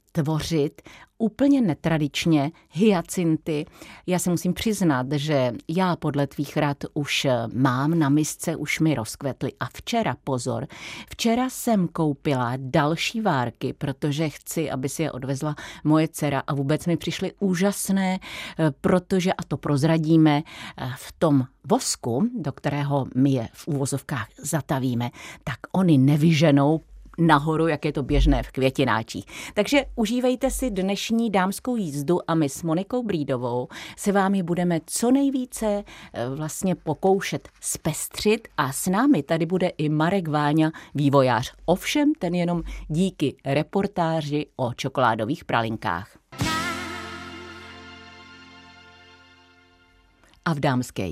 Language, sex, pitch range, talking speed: Czech, female, 140-185 Hz, 120 wpm